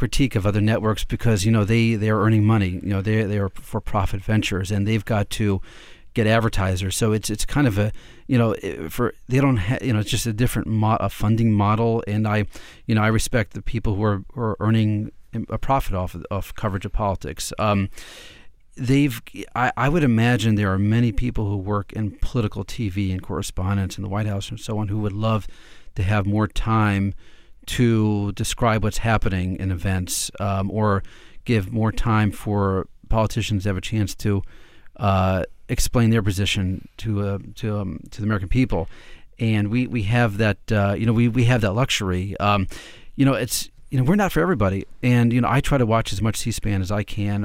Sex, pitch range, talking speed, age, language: male, 100-115 Hz, 210 wpm, 40-59, English